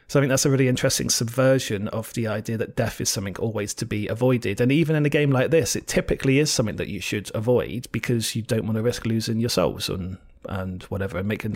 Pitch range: 105-130 Hz